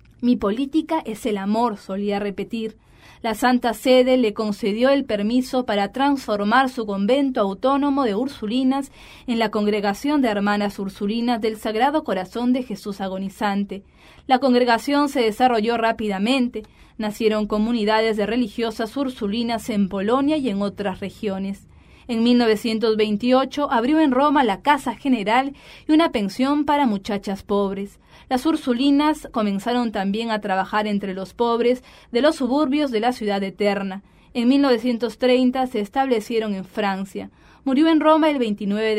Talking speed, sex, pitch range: 140 wpm, female, 205-260 Hz